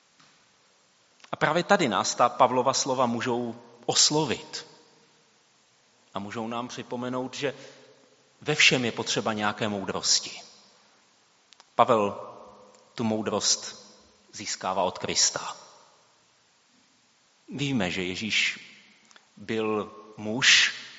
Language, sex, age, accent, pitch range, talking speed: Czech, male, 30-49, native, 100-125 Hz, 90 wpm